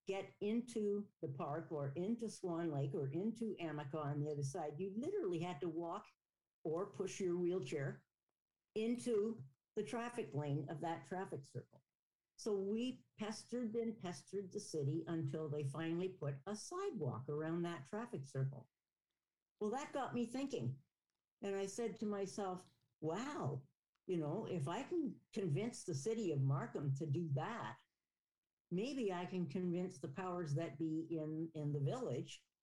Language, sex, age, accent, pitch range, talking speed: English, female, 60-79, American, 155-215 Hz, 155 wpm